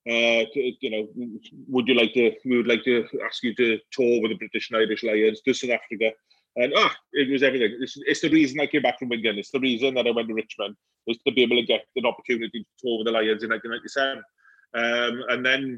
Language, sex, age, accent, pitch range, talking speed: English, male, 30-49, British, 115-140 Hz, 245 wpm